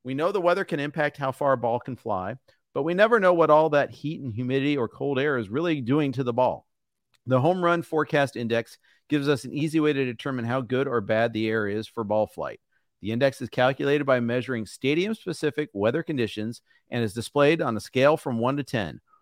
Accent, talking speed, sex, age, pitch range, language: American, 225 wpm, male, 40-59, 120-155 Hz, English